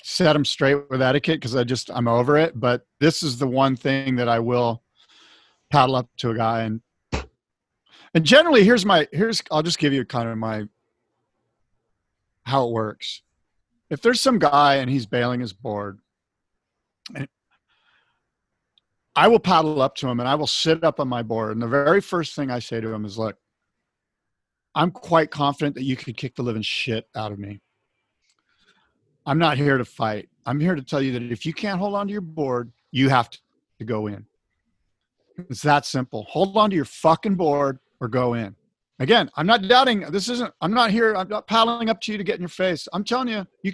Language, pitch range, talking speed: English, 125-195 Hz, 205 wpm